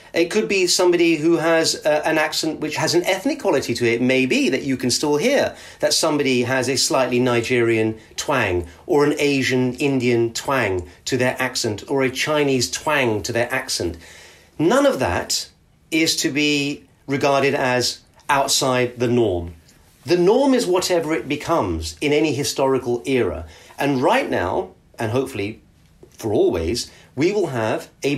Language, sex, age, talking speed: English, male, 40-59, 165 wpm